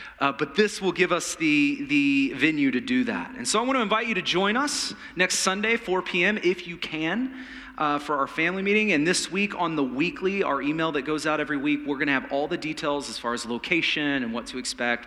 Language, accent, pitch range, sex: English, American, 150-245 Hz, male